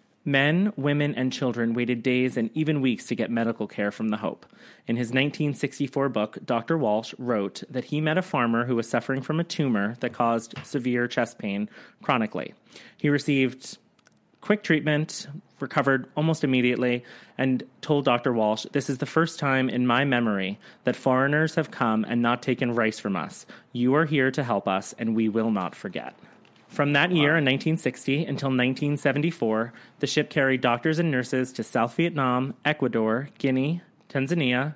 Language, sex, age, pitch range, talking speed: English, male, 30-49, 120-150 Hz, 170 wpm